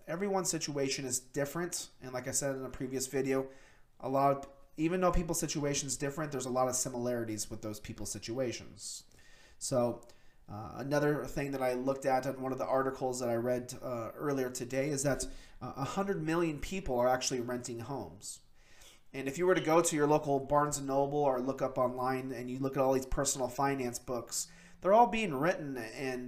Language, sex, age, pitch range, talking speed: English, male, 30-49, 125-145 Hz, 205 wpm